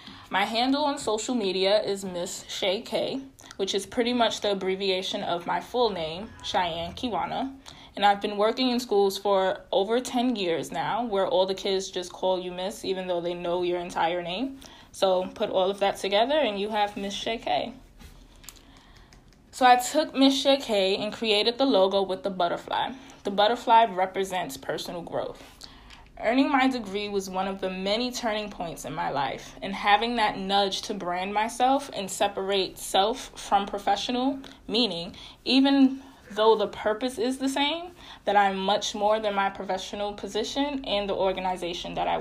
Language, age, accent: English, 20-39, American